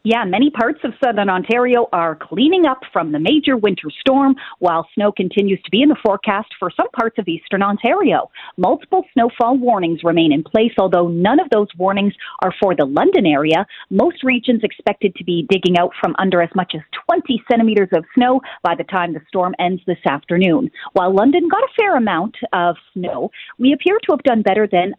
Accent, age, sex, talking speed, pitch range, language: American, 40-59, female, 200 wpm, 180-260 Hz, English